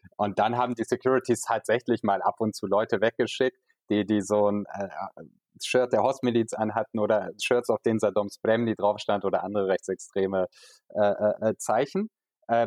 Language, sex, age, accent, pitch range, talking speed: German, male, 30-49, German, 105-130 Hz, 165 wpm